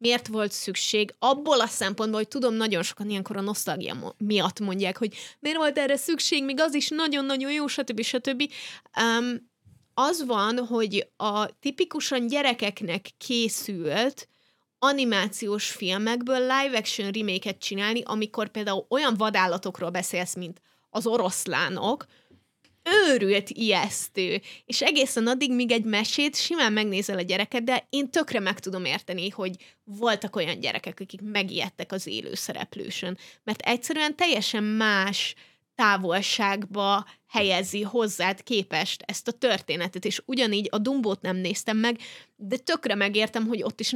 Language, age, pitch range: Hungarian, 20-39, 195-255 Hz